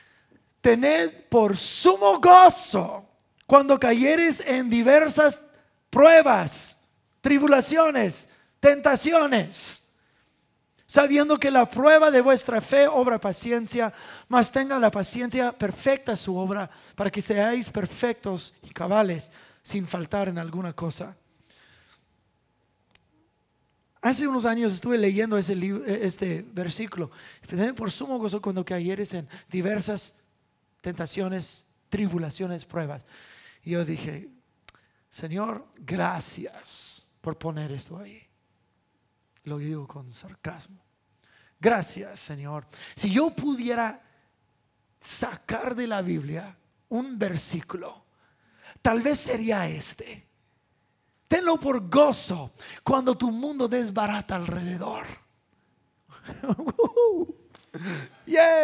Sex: male